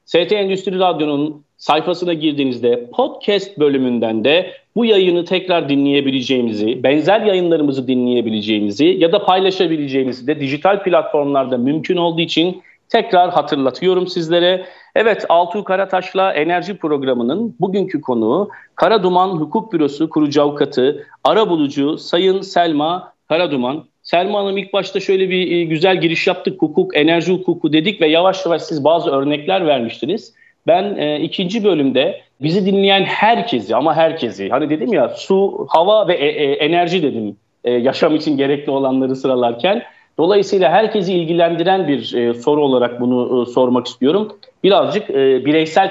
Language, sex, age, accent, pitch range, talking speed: Turkish, male, 40-59, native, 140-190 Hz, 135 wpm